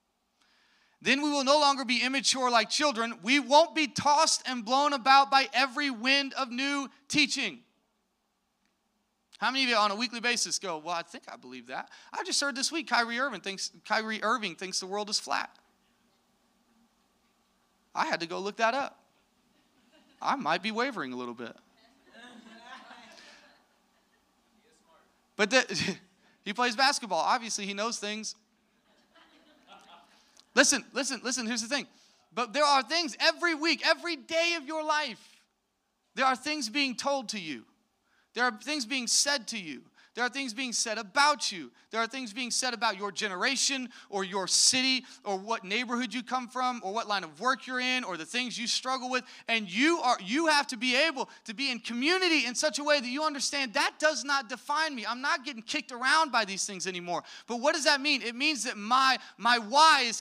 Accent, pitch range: American, 220-280 Hz